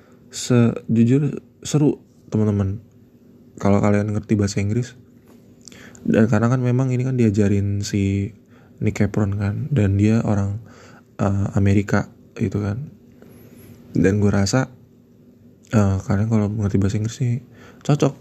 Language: Indonesian